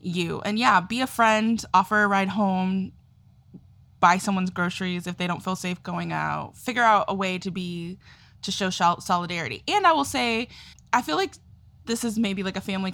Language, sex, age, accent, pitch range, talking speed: English, female, 20-39, American, 180-215 Hz, 195 wpm